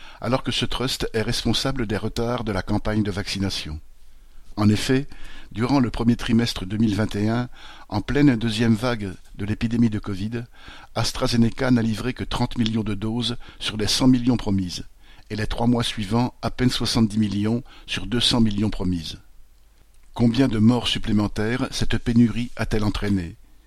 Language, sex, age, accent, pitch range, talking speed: French, male, 50-69, French, 105-125 Hz, 160 wpm